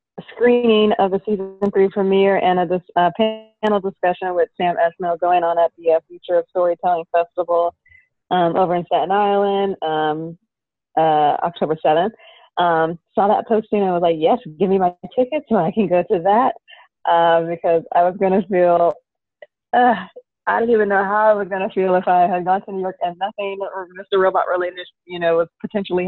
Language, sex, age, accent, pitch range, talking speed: English, female, 20-39, American, 170-200 Hz, 190 wpm